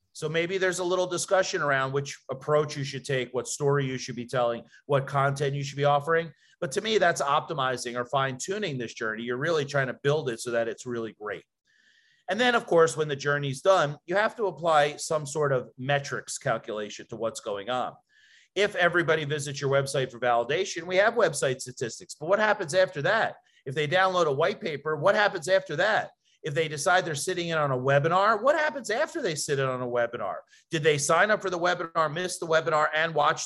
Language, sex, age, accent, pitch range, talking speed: English, male, 40-59, American, 130-175 Hz, 220 wpm